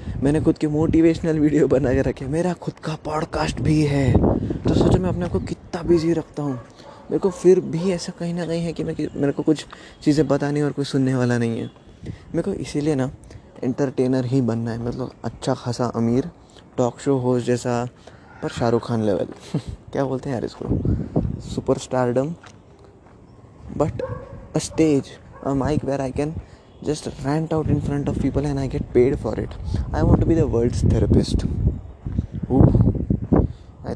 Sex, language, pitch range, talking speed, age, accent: male, Hindi, 120-150 Hz, 180 wpm, 20-39, native